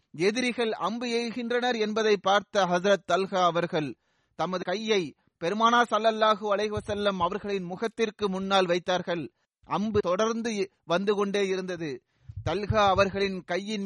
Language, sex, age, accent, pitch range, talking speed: Tamil, male, 30-49, native, 185-225 Hz, 105 wpm